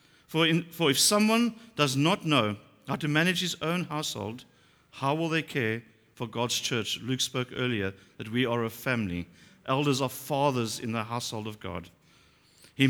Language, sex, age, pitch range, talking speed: English, male, 50-69, 125-160 Hz, 175 wpm